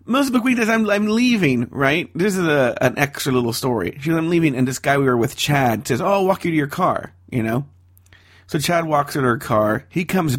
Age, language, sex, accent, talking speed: 40-59, English, male, American, 250 wpm